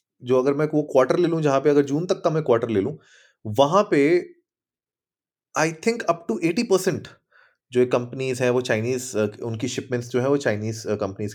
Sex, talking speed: male, 195 wpm